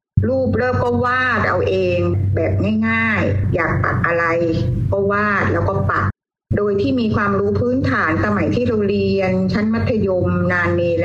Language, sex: Thai, female